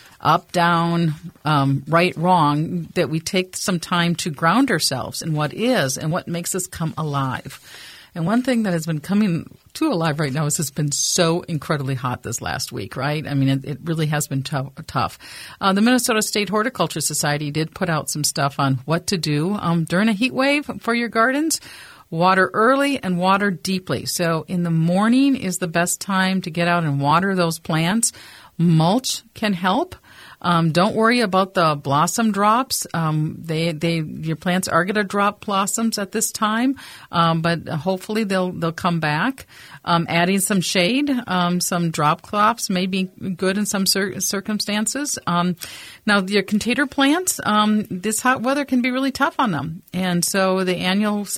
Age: 50-69